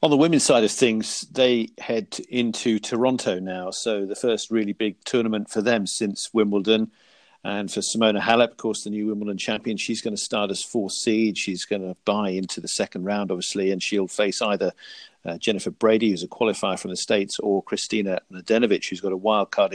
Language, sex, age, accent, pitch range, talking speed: English, male, 50-69, British, 105-125 Hz, 205 wpm